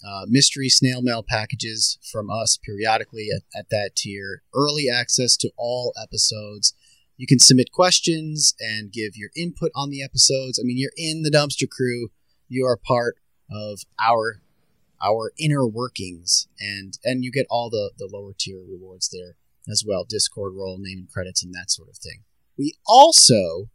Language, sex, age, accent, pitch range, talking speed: English, male, 30-49, American, 115-170 Hz, 170 wpm